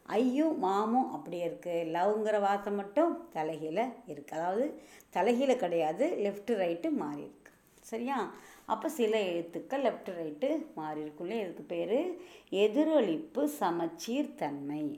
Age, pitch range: 50-69, 165-240 Hz